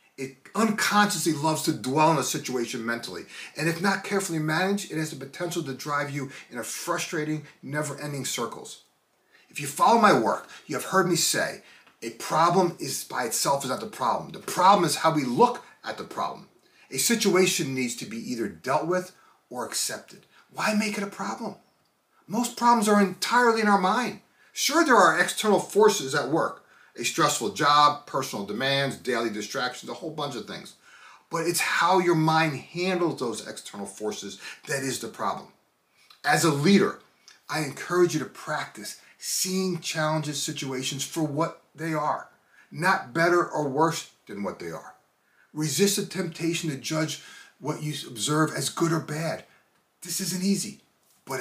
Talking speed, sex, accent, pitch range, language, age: 170 wpm, male, American, 145-190 Hz, English, 30-49